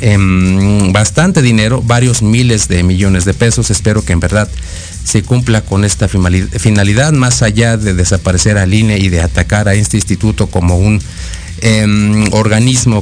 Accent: Mexican